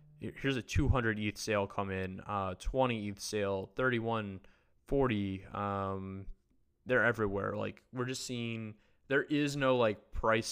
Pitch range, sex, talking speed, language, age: 100-115 Hz, male, 145 wpm, English, 20-39